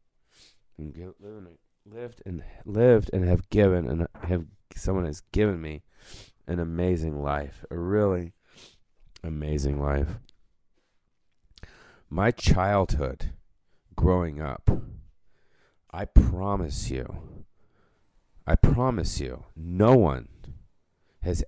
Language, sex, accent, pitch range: English, male, American, 75-90 Hz